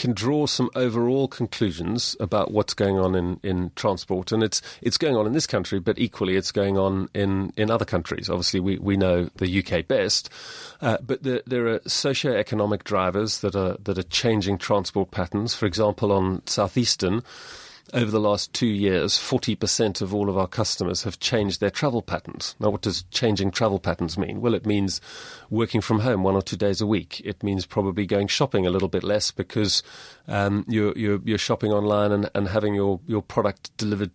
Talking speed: 205 wpm